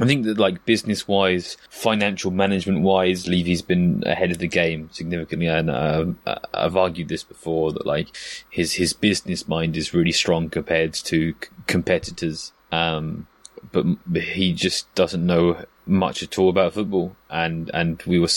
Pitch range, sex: 80-95 Hz, male